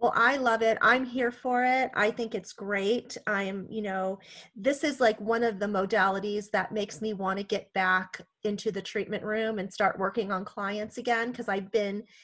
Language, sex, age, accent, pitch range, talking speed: English, female, 30-49, American, 195-235 Hz, 210 wpm